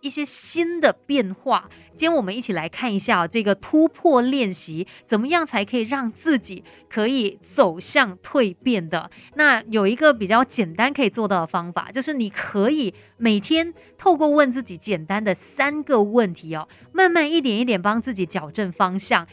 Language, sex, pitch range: Chinese, female, 195-275 Hz